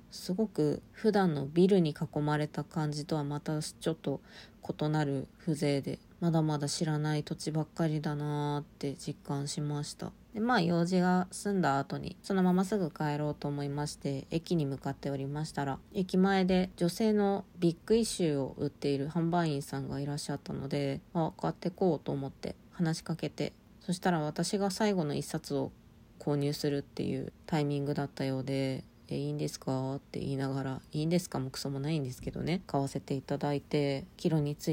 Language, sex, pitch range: Japanese, female, 145-180 Hz